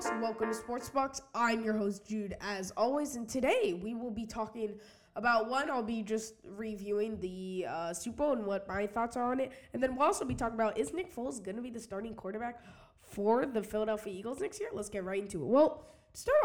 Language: English